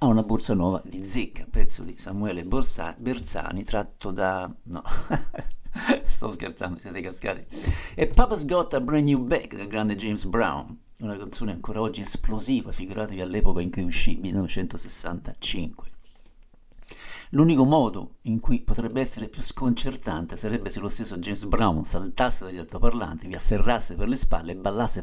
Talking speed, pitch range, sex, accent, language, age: 155 wpm, 95-120 Hz, male, native, Italian, 50-69